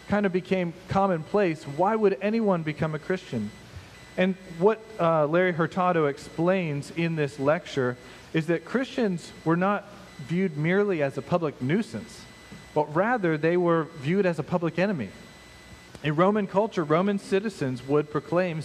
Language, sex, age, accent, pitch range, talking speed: English, male, 40-59, American, 145-190 Hz, 150 wpm